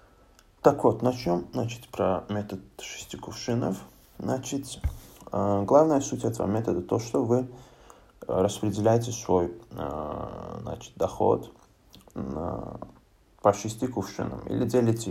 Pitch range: 95-115 Hz